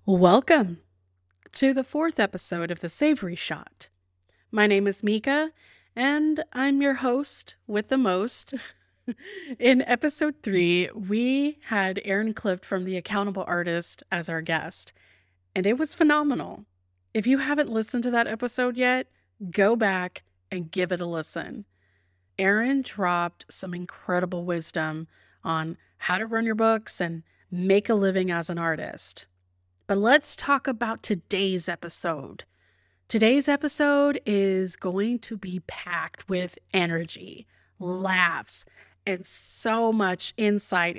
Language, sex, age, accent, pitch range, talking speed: English, female, 30-49, American, 175-250 Hz, 135 wpm